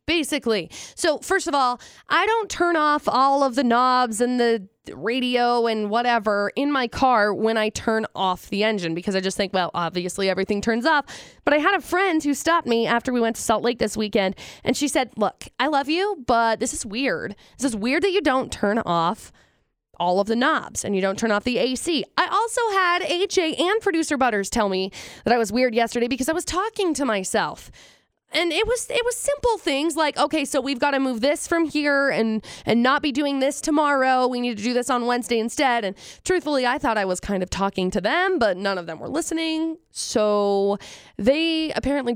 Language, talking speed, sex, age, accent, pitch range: English, 220 wpm, female, 20-39, American, 215-300 Hz